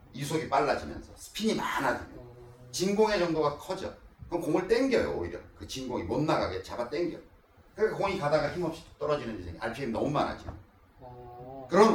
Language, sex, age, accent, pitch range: Korean, male, 40-59, native, 115-170 Hz